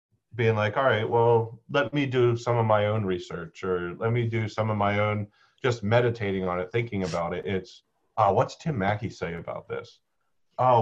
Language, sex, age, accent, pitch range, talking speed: English, male, 30-49, American, 95-115 Hz, 205 wpm